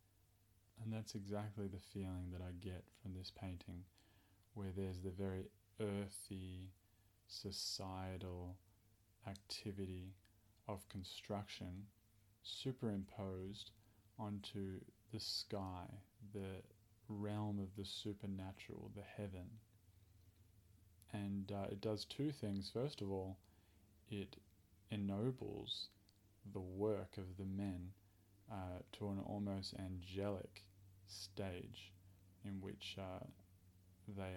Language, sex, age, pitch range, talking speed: English, male, 20-39, 95-105 Hz, 100 wpm